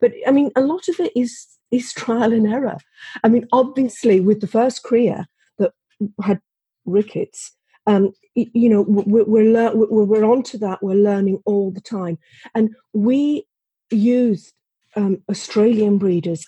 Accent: British